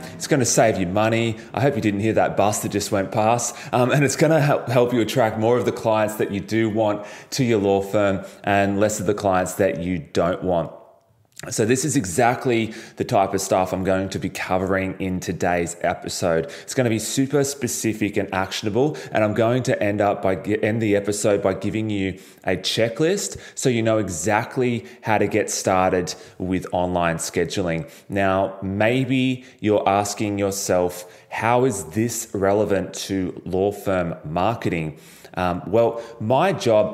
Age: 20-39